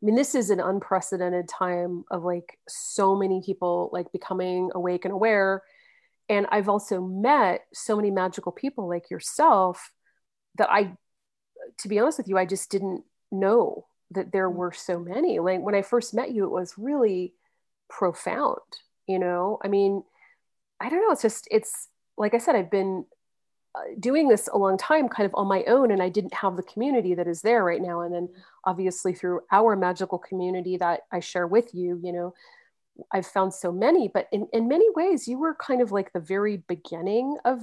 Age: 40-59